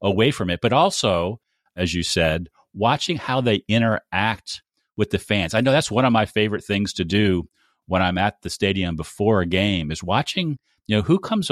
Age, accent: 40-59, American